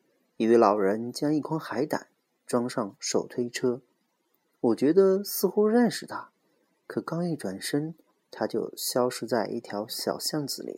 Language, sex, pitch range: Chinese, male, 110-150 Hz